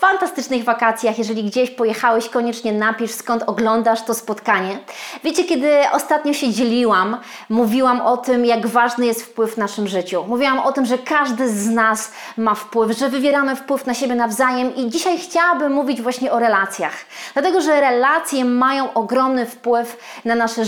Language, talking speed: Polish, 165 wpm